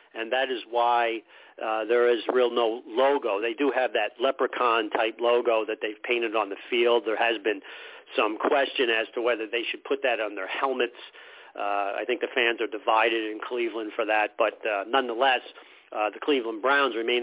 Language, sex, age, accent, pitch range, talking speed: English, male, 40-59, American, 115-145 Hz, 195 wpm